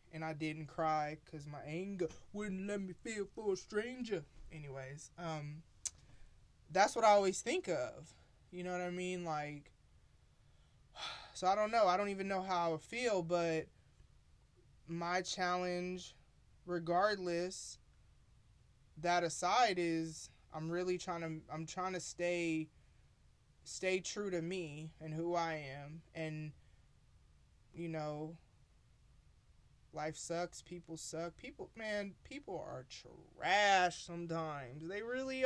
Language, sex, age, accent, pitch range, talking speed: English, male, 20-39, American, 155-185 Hz, 130 wpm